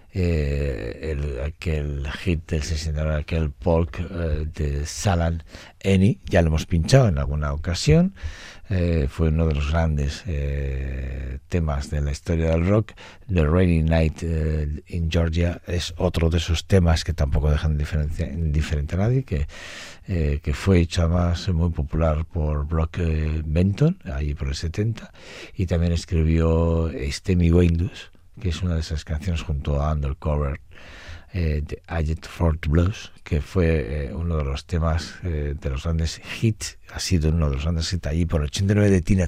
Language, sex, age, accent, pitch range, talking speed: Spanish, male, 60-79, Spanish, 75-90 Hz, 165 wpm